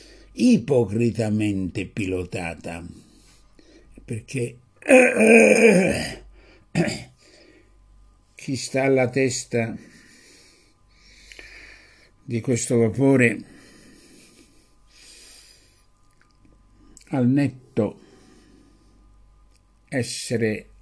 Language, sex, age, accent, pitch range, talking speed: Italian, male, 60-79, native, 95-125 Hz, 45 wpm